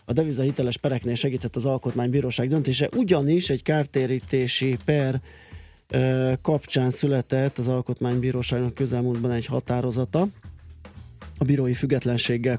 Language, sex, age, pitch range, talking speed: Hungarian, male, 20-39, 115-130 Hz, 105 wpm